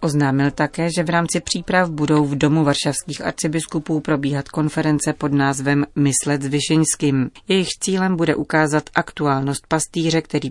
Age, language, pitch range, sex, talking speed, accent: 30-49, Czech, 140-160 Hz, female, 135 wpm, native